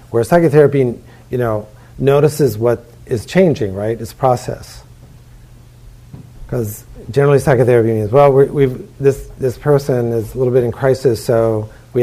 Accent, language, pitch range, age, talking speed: American, English, 115-125 Hz, 40-59, 140 wpm